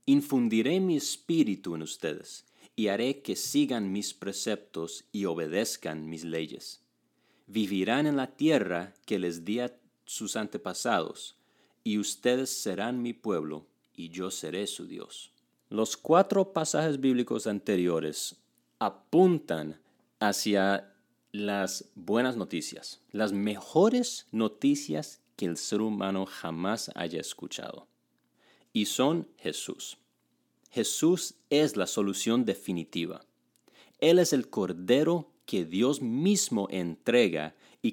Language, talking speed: Spanish, 110 wpm